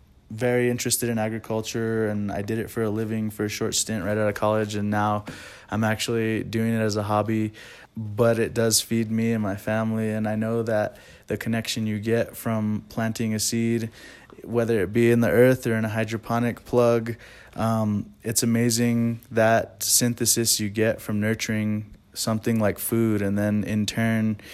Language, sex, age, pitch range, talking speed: English, male, 20-39, 105-115 Hz, 185 wpm